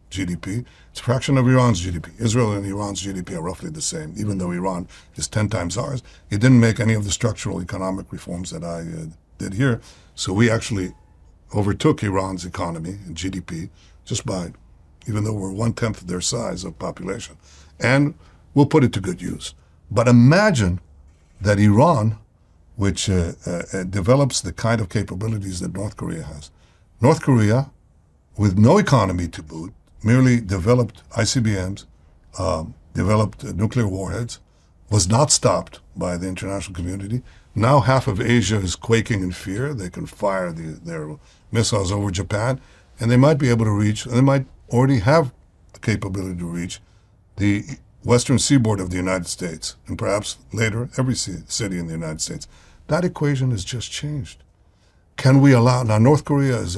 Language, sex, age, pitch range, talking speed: English, male, 60-79, 90-120 Hz, 165 wpm